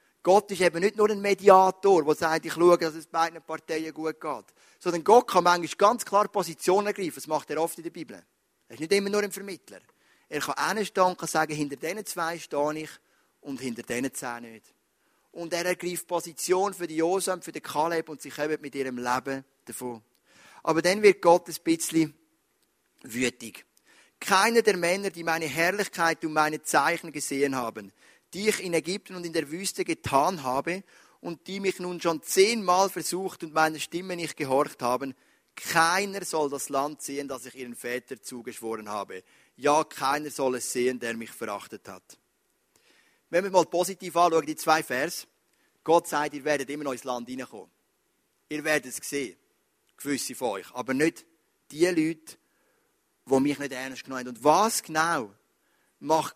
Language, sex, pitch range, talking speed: German, male, 140-185 Hz, 185 wpm